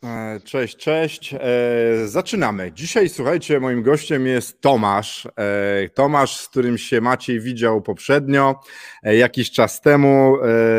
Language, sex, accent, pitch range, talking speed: Polish, male, native, 120-150 Hz, 105 wpm